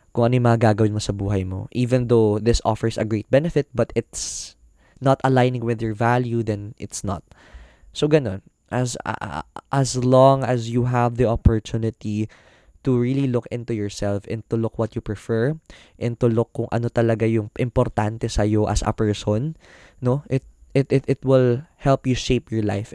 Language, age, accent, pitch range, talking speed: Filipino, 20-39, native, 100-125 Hz, 180 wpm